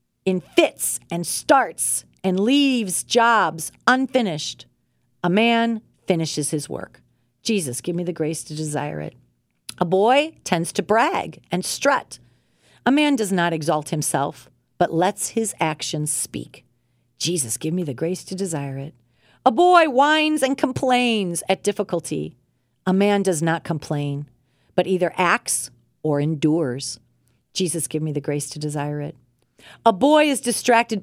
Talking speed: 145 wpm